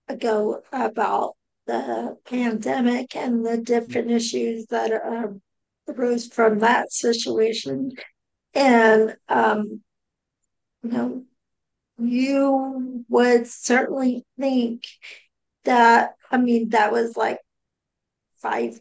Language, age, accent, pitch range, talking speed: English, 50-69, American, 215-245 Hz, 95 wpm